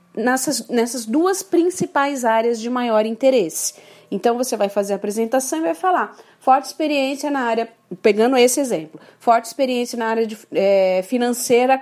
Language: Portuguese